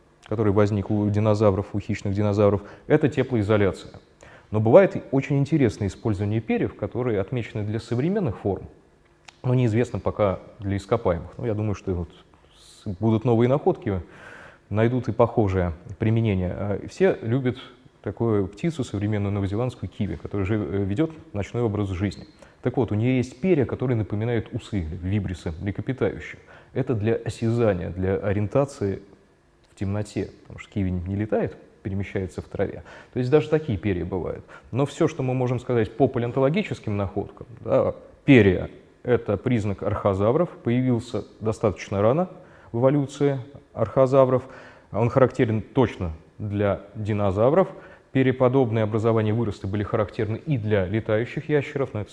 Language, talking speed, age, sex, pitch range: Russian, 135 wpm, 20-39, male, 100-125 Hz